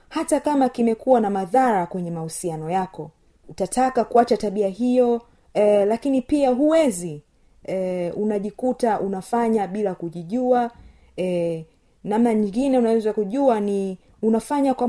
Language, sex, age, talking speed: Swahili, female, 30-49, 115 wpm